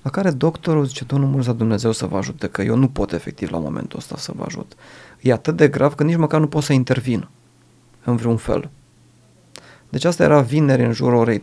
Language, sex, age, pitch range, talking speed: Romanian, male, 30-49, 110-135 Hz, 220 wpm